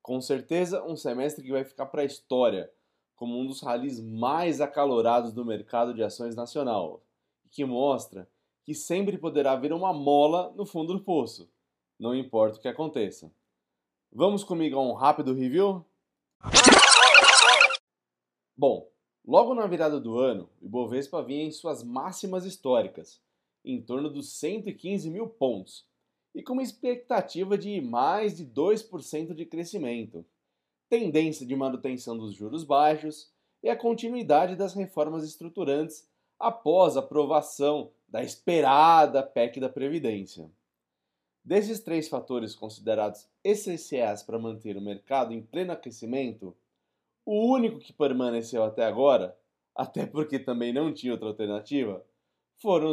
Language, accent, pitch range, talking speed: Portuguese, Brazilian, 115-165 Hz, 135 wpm